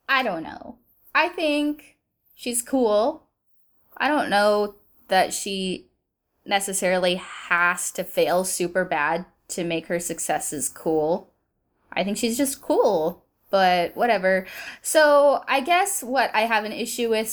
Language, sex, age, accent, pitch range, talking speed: English, female, 10-29, American, 175-230 Hz, 135 wpm